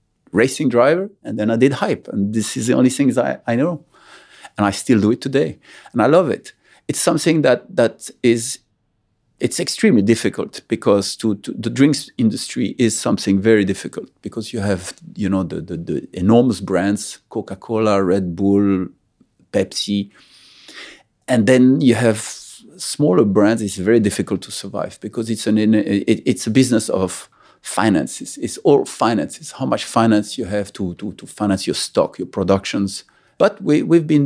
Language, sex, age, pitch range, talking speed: English, male, 50-69, 100-125 Hz, 175 wpm